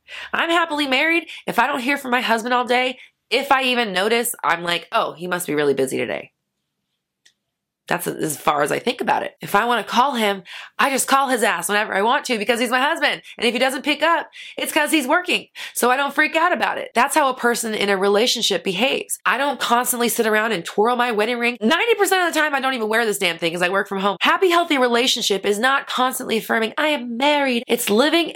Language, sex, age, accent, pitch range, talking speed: English, female, 20-39, American, 205-280 Hz, 245 wpm